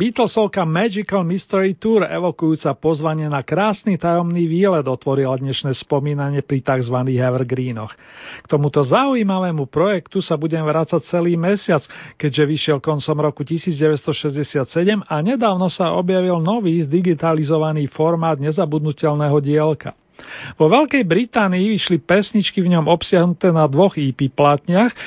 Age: 40-59